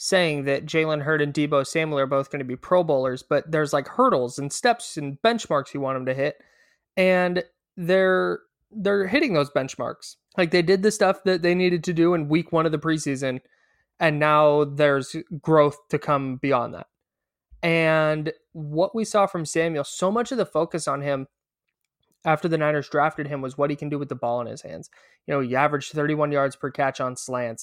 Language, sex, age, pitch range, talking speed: English, male, 20-39, 140-170 Hz, 210 wpm